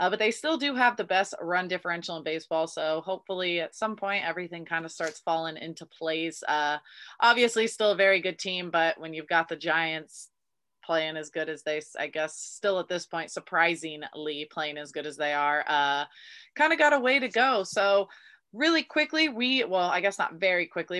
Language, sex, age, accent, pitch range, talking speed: English, female, 20-39, American, 170-210 Hz, 205 wpm